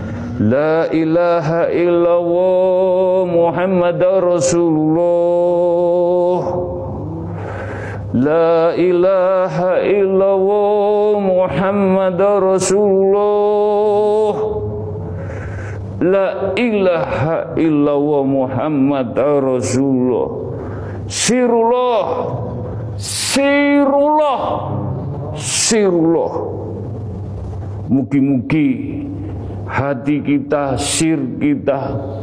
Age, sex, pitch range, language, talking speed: 50-69, male, 130-190 Hz, Indonesian, 45 wpm